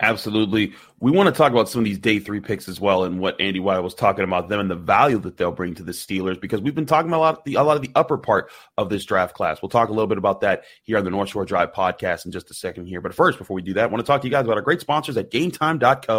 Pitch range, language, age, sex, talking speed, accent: 105-140 Hz, English, 30-49, male, 325 wpm, American